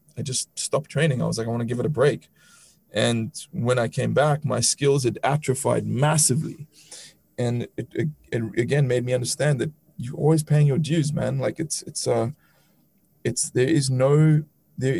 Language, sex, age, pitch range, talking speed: English, male, 20-39, 120-150 Hz, 190 wpm